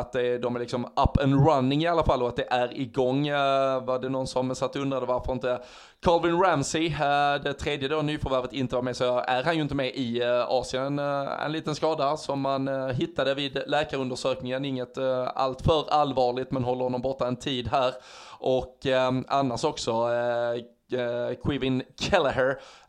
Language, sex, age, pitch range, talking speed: Swedish, male, 20-39, 125-145 Hz, 170 wpm